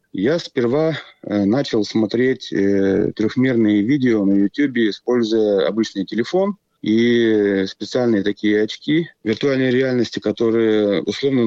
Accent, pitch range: native, 100-130 Hz